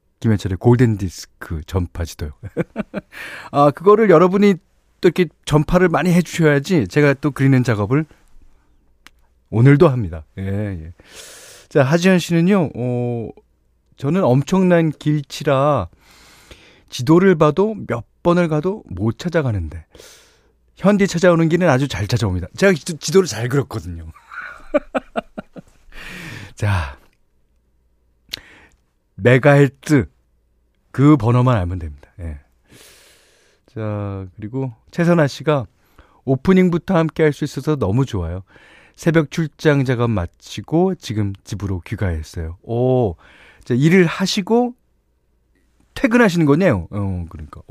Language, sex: Korean, male